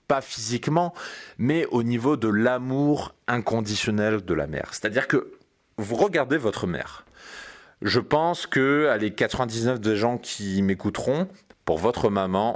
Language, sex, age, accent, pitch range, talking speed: French, male, 30-49, French, 105-130 Hz, 140 wpm